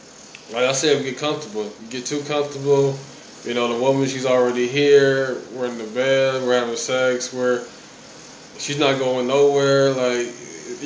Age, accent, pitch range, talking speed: 20-39, American, 120-140 Hz, 165 wpm